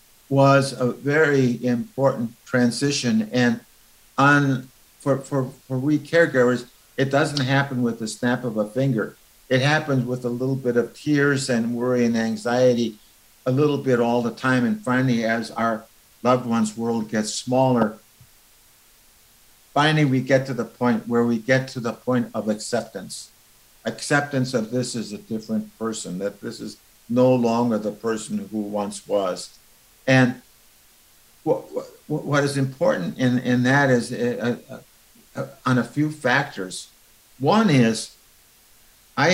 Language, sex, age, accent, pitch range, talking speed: English, male, 60-79, American, 115-140 Hz, 145 wpm